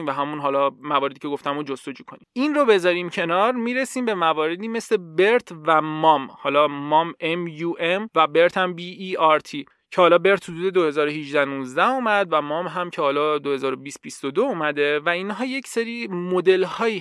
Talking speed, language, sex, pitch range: 165 wpm, Persian, male, 150-205 Hz